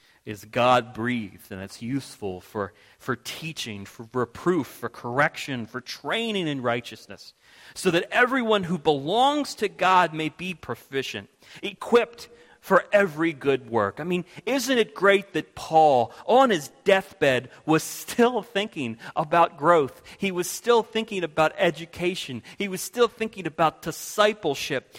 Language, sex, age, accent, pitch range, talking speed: English, male, 40-59, American, 140-200 Hz, 140 wpm